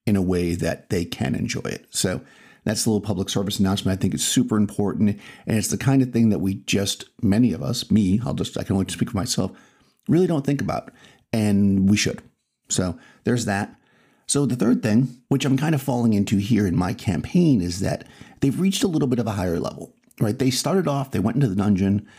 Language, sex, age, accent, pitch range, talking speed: English, male, 50-69, American, 100-130 Hz, 230 wpm